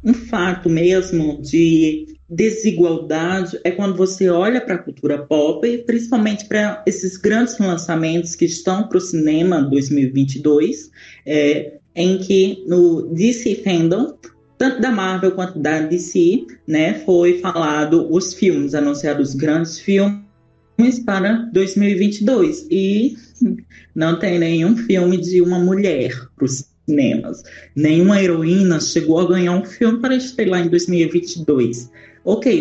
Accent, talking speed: Brazilian, 130 wpm